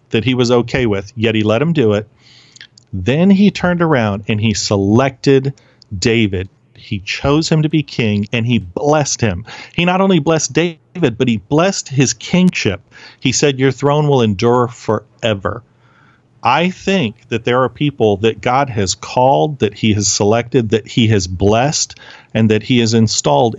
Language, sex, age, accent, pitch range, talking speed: English, male, 40-59, American, 105-130 Hz, 175 wpm